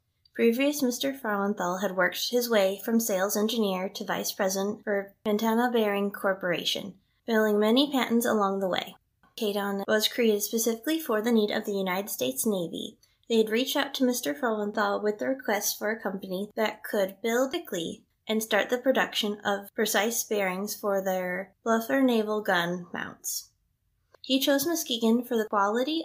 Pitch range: 200-235 Hz